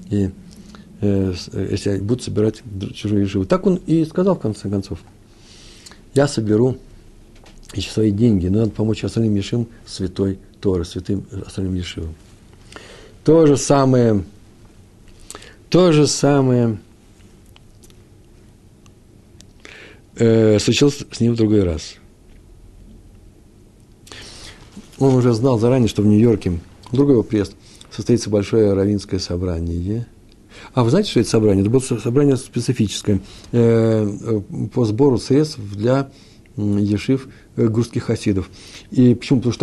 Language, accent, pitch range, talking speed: Russian, native, 100-125 Hz, 120 wpm